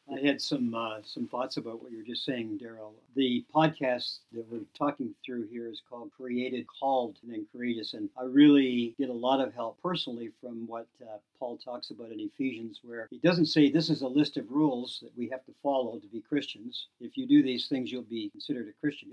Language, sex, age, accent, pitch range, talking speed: English, male, 50-69, American, 120-155 Hz, 225 wpm